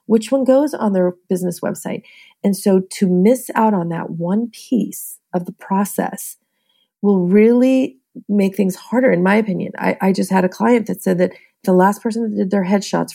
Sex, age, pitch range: female, 40-59, 190-230 Hz